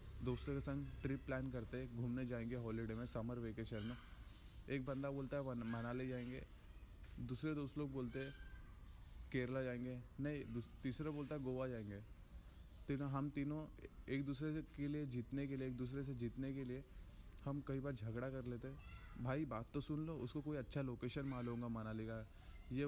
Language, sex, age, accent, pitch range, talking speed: Hindi, male, 20-39, native, 115-140 Hz, 175 wpm